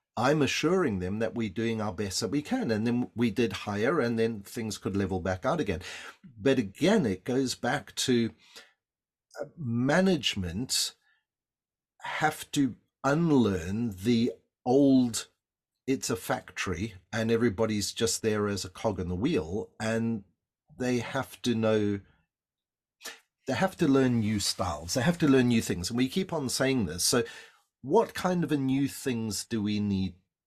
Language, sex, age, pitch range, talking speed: English, male, 40-59, 100-130 Hz, 160 wpm